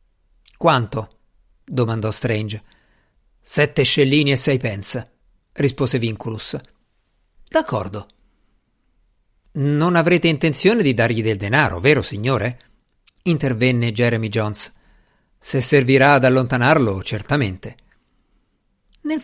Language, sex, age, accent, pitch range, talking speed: Italian, male, 50-69, native, 125-180 Hz, 90 wpm